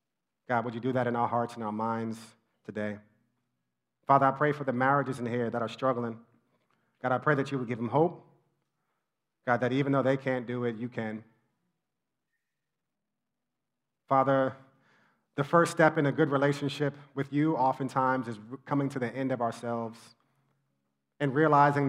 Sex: male